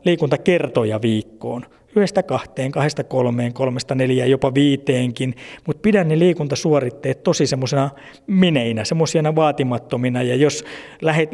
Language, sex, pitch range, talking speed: Finnish, male, 125-150 Hz, 120 wpm